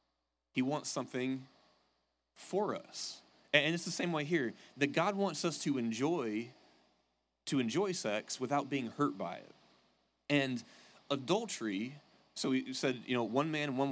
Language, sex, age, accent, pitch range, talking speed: English, male, 30-49, American, 110-145 Hz, 155 wpm